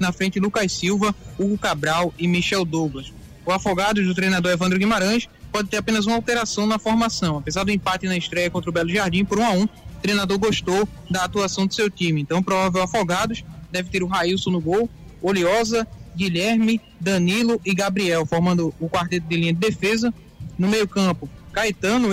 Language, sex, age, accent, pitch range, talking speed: Portuguese, male, 20-39, Brazilian, 175-210 Hz, 185 wpm